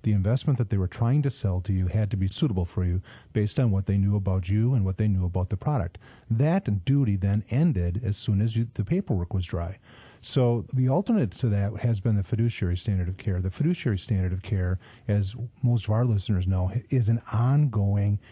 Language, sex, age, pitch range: English, male, 40-59, 100-125 Hz